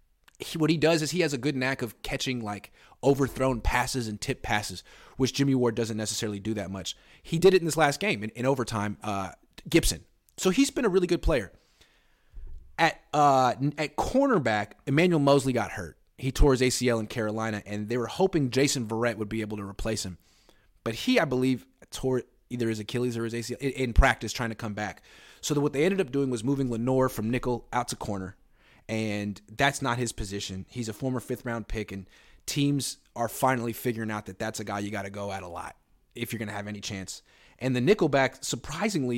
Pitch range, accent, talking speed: 105-135 Hz, American, 220 wpm